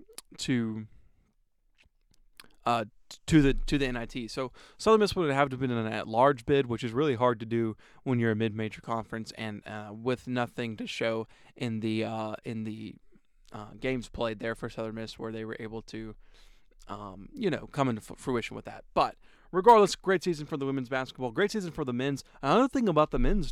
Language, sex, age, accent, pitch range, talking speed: English, male, 20-39, American, 115-150 Hz, 210 wpm